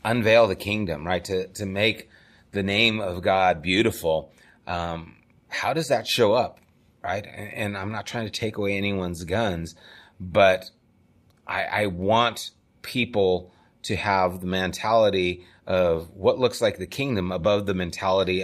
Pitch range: 90-115 Hz